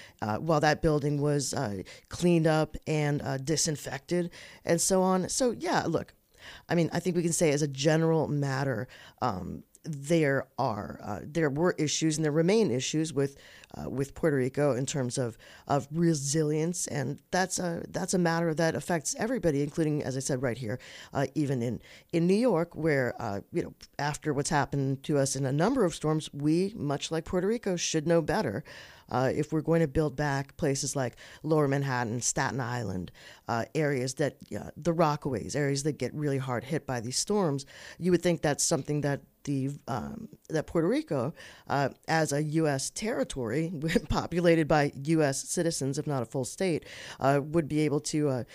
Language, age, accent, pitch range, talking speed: English, 40-59, American, 135-165 Hz, 190 wpm